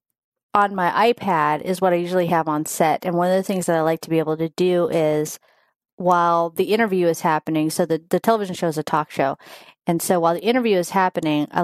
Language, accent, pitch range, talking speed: English, American, 160-185 Hz, 235 wpm